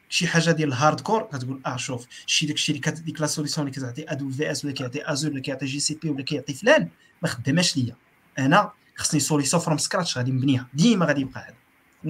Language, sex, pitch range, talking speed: Arabic, male, 145-200 Hz, 215 wpm